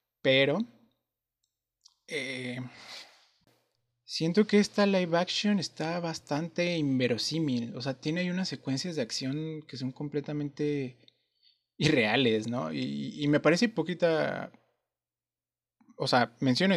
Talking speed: 105 wpm